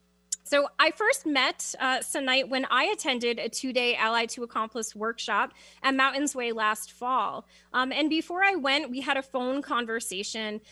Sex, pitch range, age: female, 230-290 Hz, 20-39